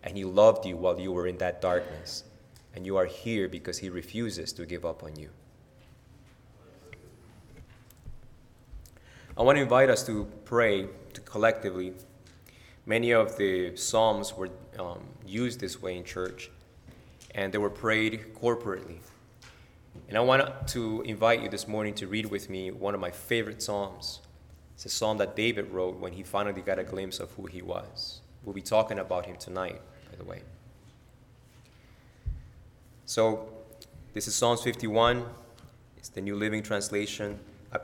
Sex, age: male, 20-39